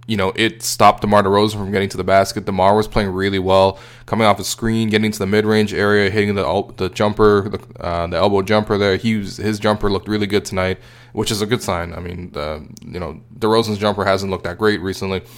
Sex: male